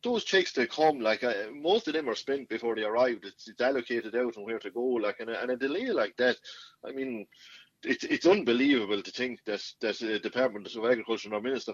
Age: 30-49